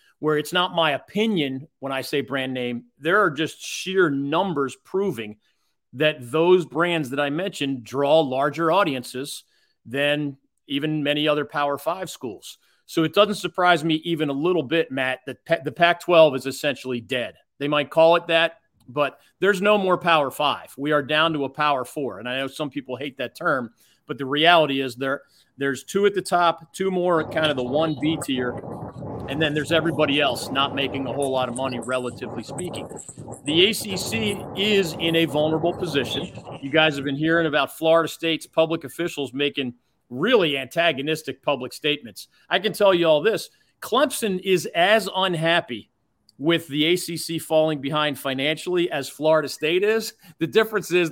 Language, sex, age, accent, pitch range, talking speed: English, male, 40-59, American, 140-175 Hz, 175 wpm